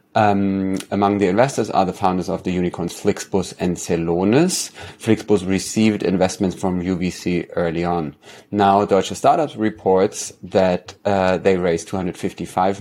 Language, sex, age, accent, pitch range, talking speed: English, male, 30-49, German, 95-115 Hz, 135 wpm